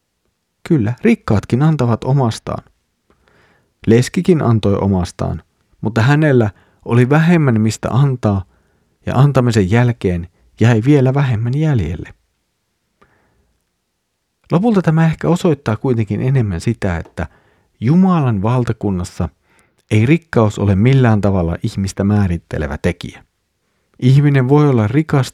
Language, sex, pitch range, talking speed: Finnish, male, 95-125 Hz, 100 wpm